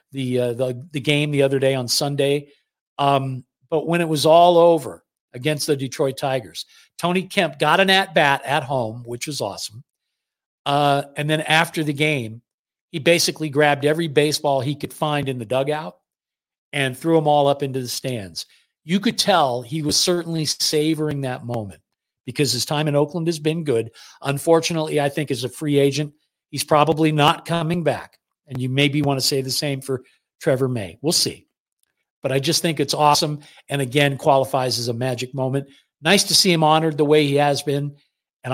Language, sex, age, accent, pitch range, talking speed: English, male, 50-69, American, 135-170 Hz, 190 wpm